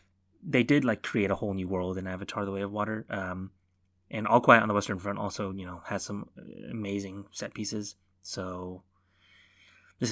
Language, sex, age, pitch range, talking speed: English, male, 20-39, 100-125 Hz, 190 wpm